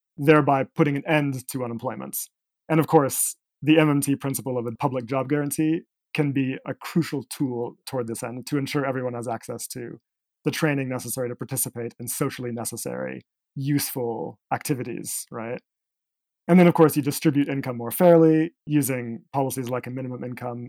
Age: 30-49